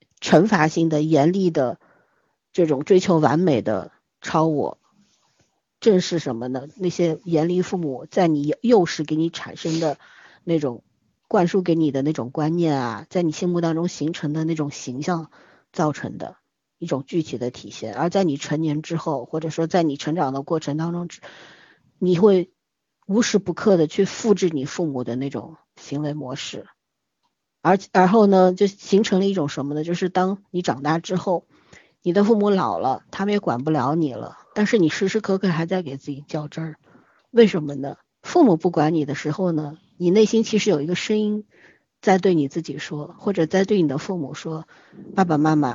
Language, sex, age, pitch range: Chinese, female, 50-69, 150-195 Hz